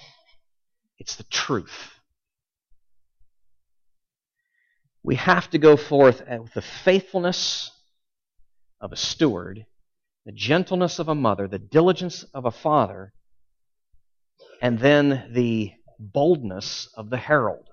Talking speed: 105 wpm